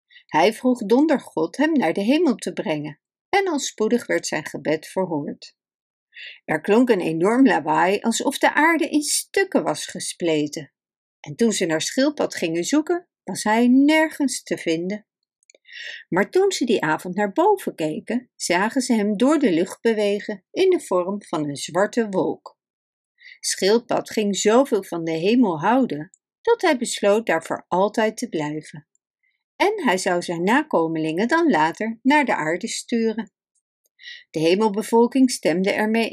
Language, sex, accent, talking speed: Dutch, female, Dutch, 155 wpm